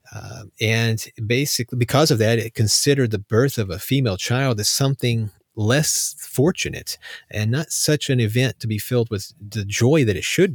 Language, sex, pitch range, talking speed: English, male, 110-150 Hz, 180 wpm